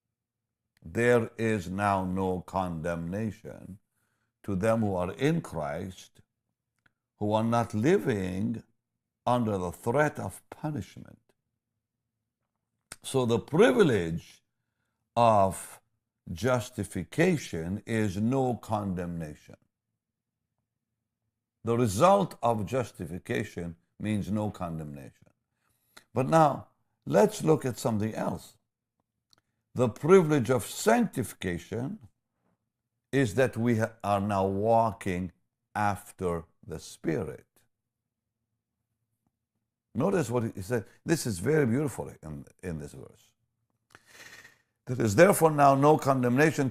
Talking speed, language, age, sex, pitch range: 95 wpm, English, 60-79, male, 105-120 Hz